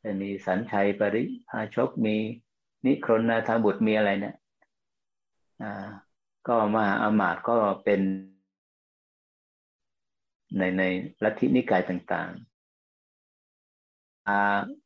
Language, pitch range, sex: Thai, 95-115 Hz, male